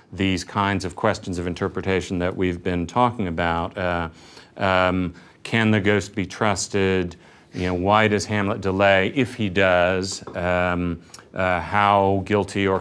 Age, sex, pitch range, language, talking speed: 40-59, male, 90-105 Hz, English, 140 wpm